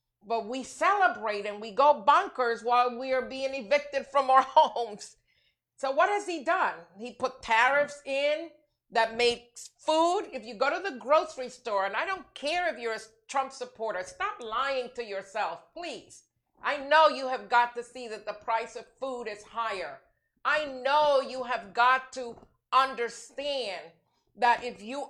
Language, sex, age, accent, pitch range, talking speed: English, female, 50-69, American, 235-290 Hz, 170 wpm